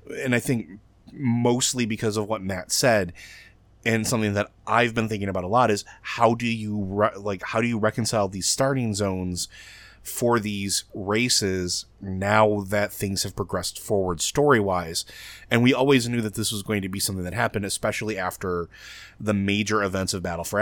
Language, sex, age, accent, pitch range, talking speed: English, male, 30-49, American, 95-115 Hz, 180 wpm